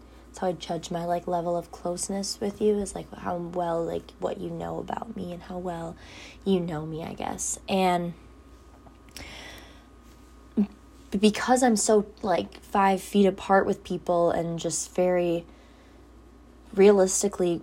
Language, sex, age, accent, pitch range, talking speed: English, female, 20-39, American, 175-210 Hz, 145 wpm